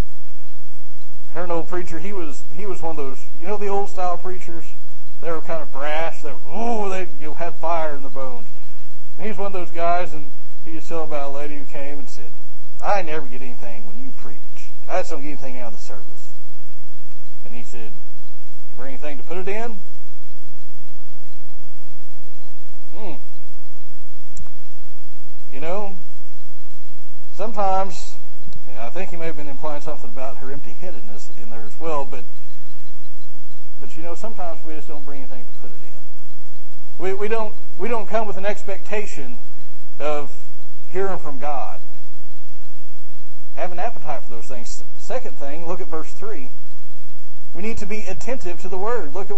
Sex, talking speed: male, 175 wpm